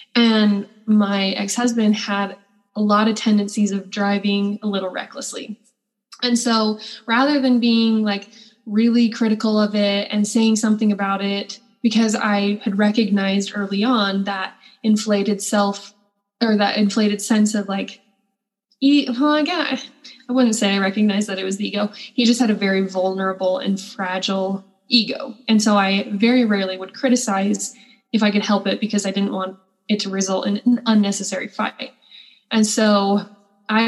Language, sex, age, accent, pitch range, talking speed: English, female, 10-29, American, 200-230 Hz, 160 wpm